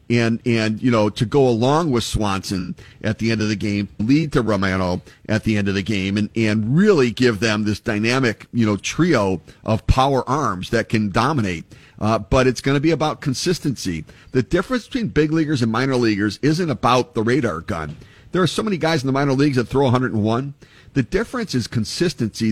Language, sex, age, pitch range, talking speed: English, male, 50-69, 110-140 Hz, 205 wpm